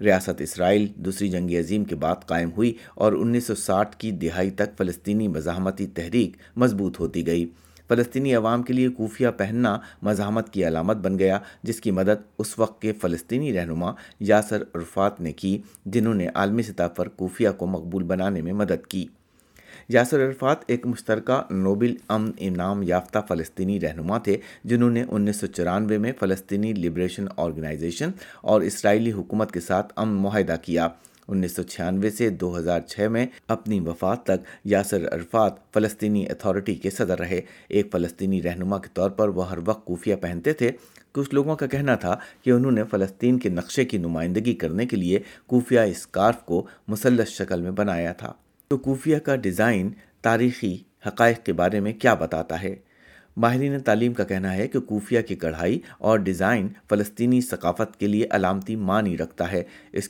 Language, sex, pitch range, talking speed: Urdu, male, 90-115 Hz, 165 wpm